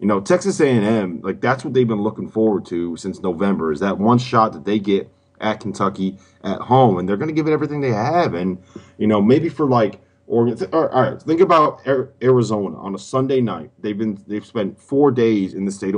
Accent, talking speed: American, 220 wpm